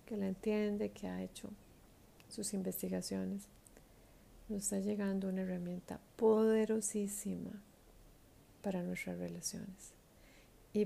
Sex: female